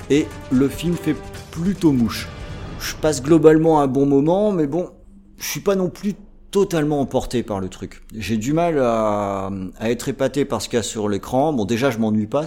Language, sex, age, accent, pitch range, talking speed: French, male, 30-49, French, 105-140 Hz, 205 wpm